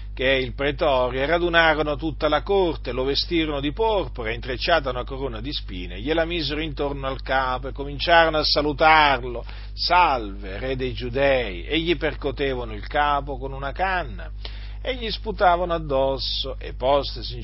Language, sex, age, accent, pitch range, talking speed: Italian, male, 40-59, native, 110-180 Hz, 155 wpm